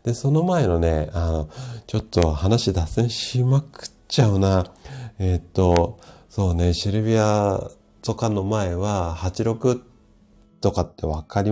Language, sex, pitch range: Japanese, male, 85-120 Hz